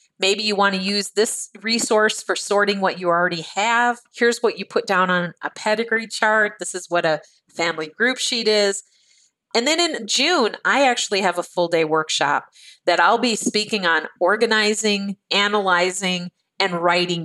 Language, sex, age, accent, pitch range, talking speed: English, female, 40-59, American, 175-230 Hz, 175 wpm